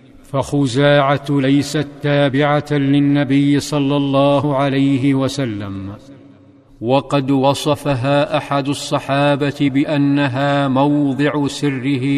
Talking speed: 75 wpm